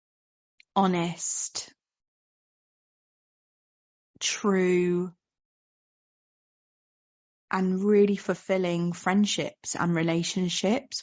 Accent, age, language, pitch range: British, 30-49, English, 175-225 Hz